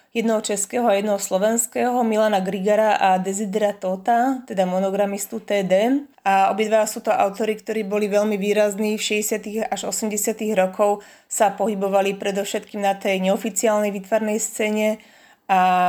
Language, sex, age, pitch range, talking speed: Slovak, female, 20-39, 195-220 Hz, 135 wpm